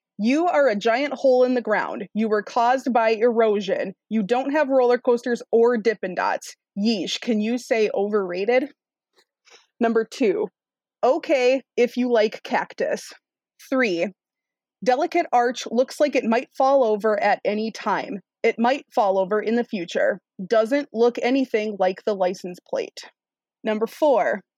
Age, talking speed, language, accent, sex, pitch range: 20-39, 150 wpm, English, American, female, 215-260 Hz